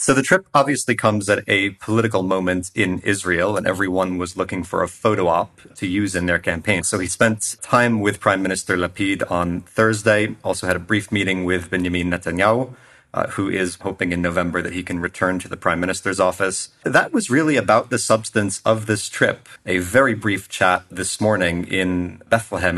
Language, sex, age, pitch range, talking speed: English, male, 30-49, 90-105 Hz, 195 wpm